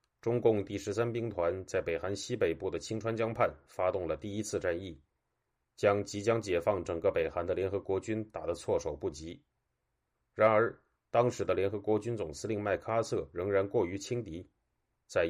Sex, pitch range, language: male, 95-110 Hz, Chinese